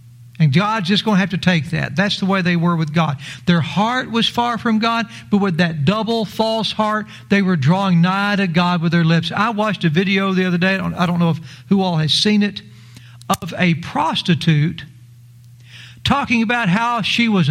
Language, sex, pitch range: English, male, 125-195 Hz